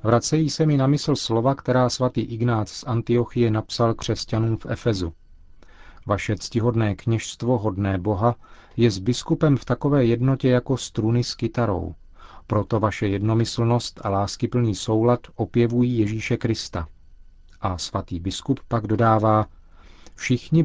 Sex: male